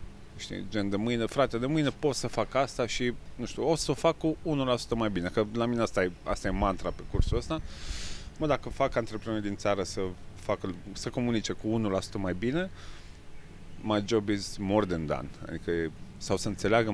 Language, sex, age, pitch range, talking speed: Romanian, male, 30-49, 95-125 Hz, 200 wpm